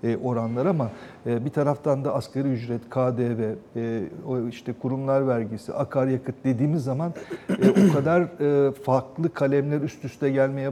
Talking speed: 120 wpm